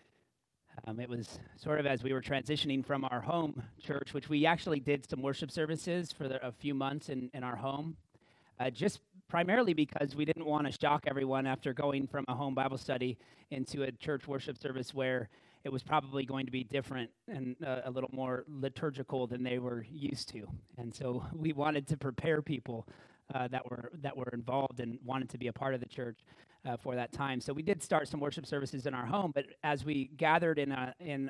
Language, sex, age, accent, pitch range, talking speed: English, male, 30-49, American, 125-145 Hz, 215 wpm